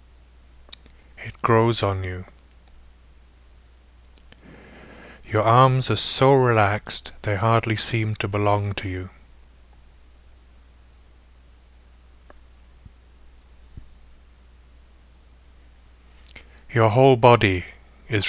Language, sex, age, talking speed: English, male, 50-69, 65 wpm